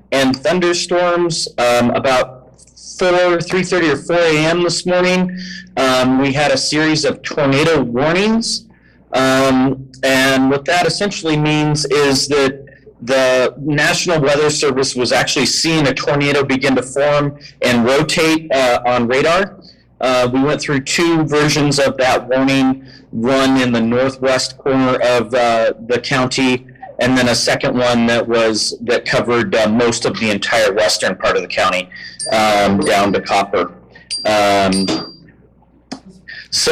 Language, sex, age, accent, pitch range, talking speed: English, male, 30-49, American, 125-150 Hz, 140 wpm